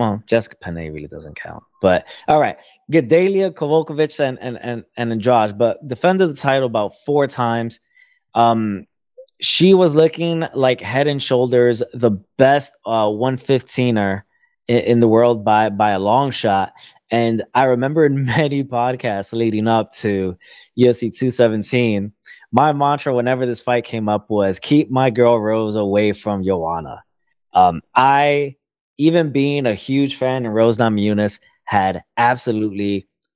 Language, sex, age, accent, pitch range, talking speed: English, male, 20-39, American, 105-130 Hz, 150 wpm